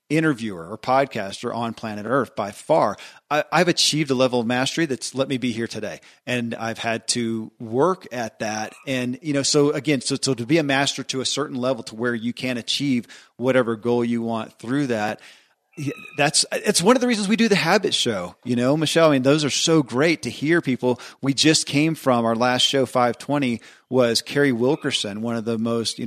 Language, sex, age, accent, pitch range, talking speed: English, male, 40-59, American, 115-140 Hz, 215 wpm